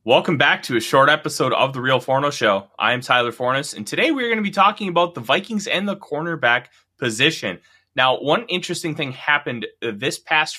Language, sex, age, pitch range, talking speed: English, male, 20-39, 115-180 Hz, 200 wpm